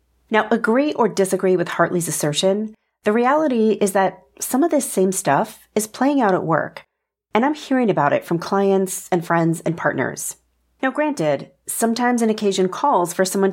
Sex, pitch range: female, 165-215 Hz